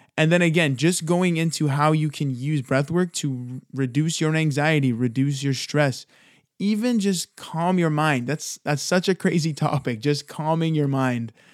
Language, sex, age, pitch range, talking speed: English, male, 20-39, 130-155 Hz, 175 wpm